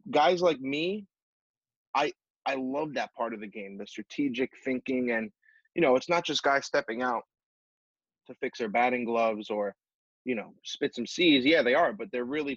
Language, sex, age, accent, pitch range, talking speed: English, male, 20-39, American, 115-150 Hz, 190 wpm